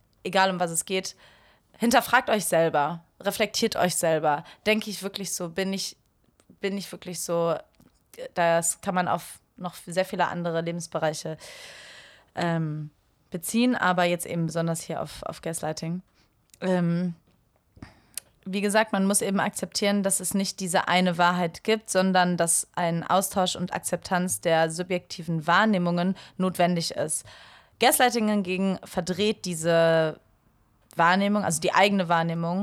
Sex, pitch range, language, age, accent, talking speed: female, 165-195 Hz, German, 20-39, German, 135 wpm